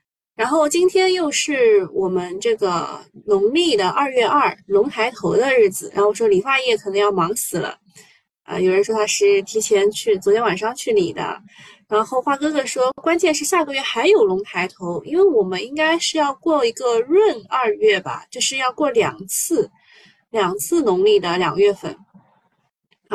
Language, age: Chinese, 20-39